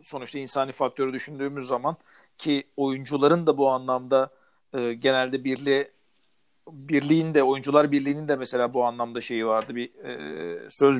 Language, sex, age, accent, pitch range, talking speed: Turkish, male, 50-69, native, 140-165 Hz, 130 wpm